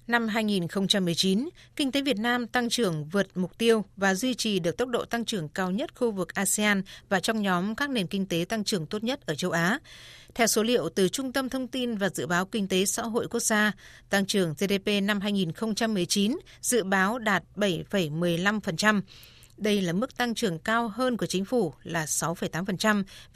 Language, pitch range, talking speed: Vietnamese, 185-230 Hz, 195 wpm